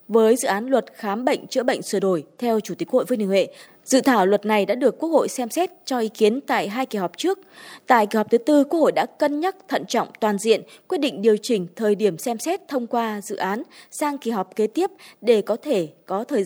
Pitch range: 205-280 Hz